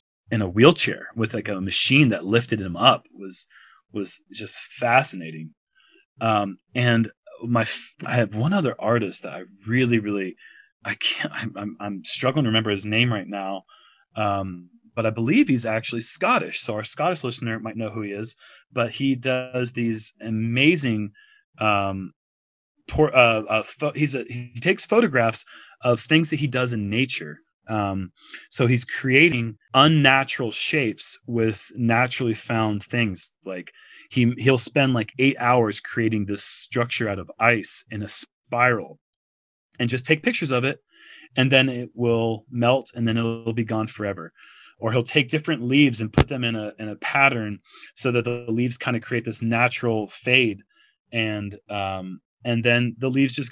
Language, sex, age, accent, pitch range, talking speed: English, male, 20-39, American, 105-130 Hz, 170 wpm